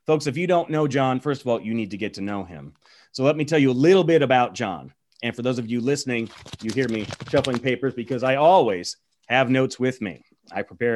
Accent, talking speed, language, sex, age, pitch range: American, 250 wpm, English, male, 30-49, 115-145 Hz